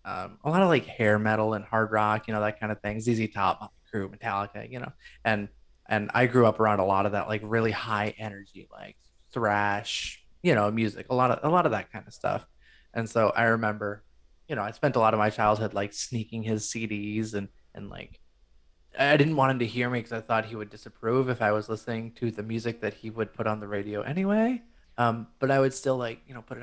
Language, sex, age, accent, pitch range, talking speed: English, male, 20-39, American, 105-115 Hz, 245 wpm